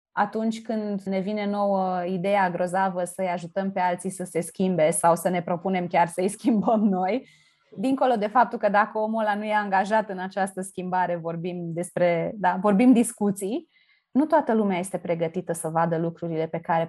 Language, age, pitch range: Romanian, 20-39, 180-230 Hz